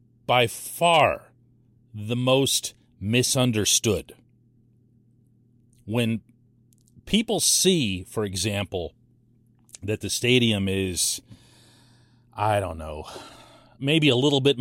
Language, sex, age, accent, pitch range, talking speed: English, male, 40-59, American, 115-135 Hz, 85 wpm